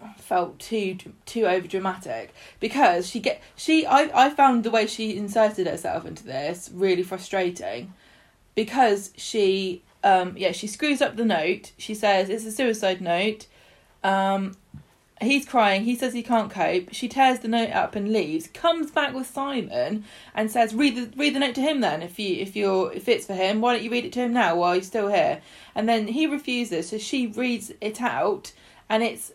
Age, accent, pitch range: 20-39, British, 190-240 Hz